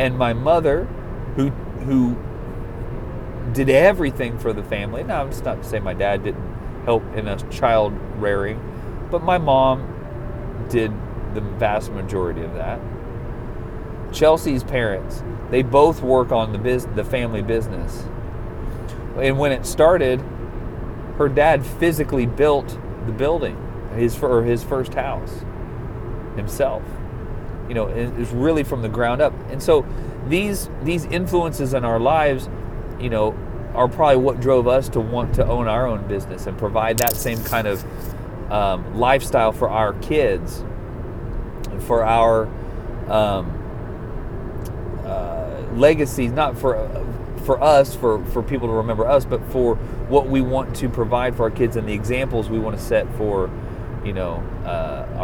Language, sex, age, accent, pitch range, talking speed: English, male, 40-59, American, 110-130 Hz, 150 wpm